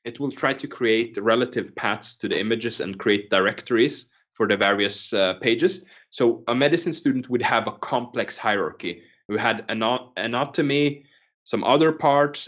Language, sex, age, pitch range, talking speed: English, male, 20-39, 110-135 Hz, 165 wpm